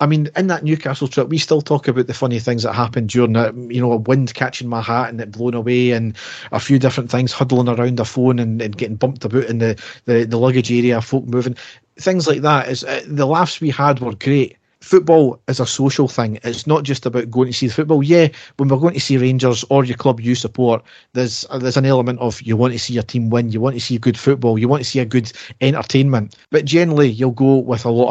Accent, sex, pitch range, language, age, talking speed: British, male, 120-135 Hz, English, 40-59, 255 wpm